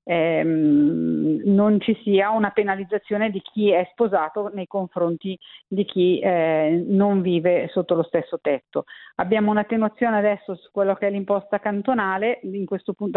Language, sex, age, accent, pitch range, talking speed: Italian, female, 50-69, native, 175-210 Hz, 150 wpm